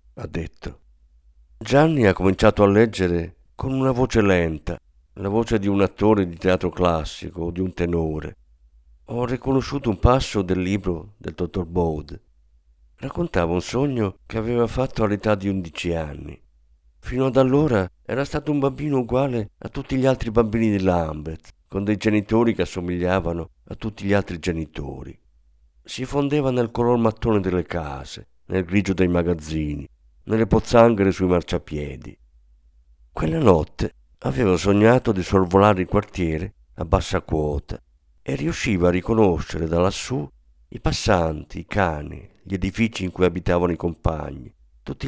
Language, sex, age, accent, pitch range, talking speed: Italian, male, 50-69, native, 80-110 Hz, 150 wpm